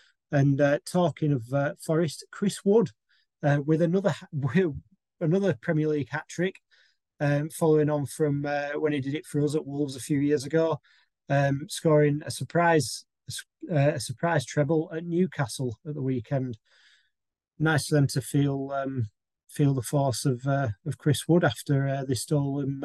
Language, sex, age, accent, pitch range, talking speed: English, male, 30-49, British, 140-165 Hz, 175 wpm